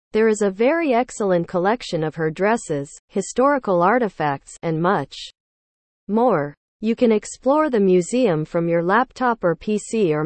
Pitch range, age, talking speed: 165-230 Hz, 40-59, 145 wpm